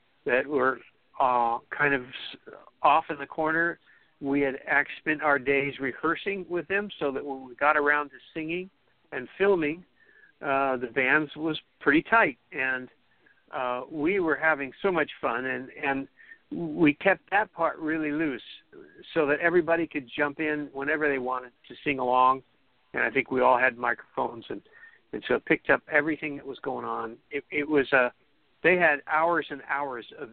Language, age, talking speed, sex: English, 60-79, 175 wpm, male